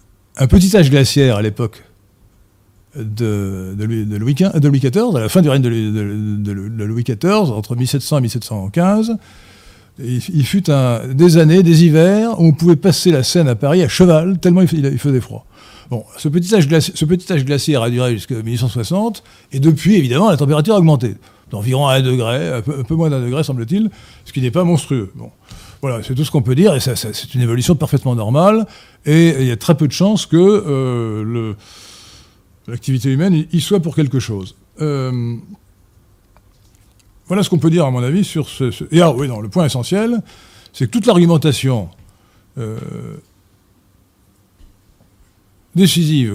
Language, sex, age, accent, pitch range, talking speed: French, male, 50-69, French, 105-160 Hz, 185 wpm